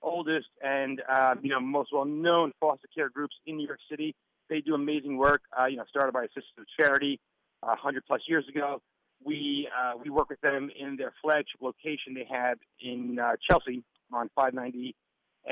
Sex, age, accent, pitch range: male, 40-59, American, 130-165 Hz